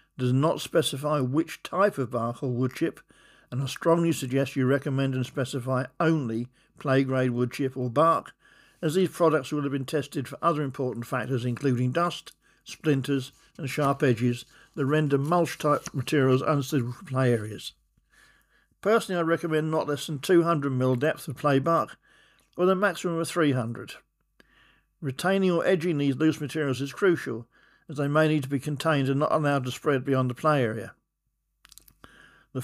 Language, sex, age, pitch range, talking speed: English, male, 60-79, 130-165 Hz, 170 wpm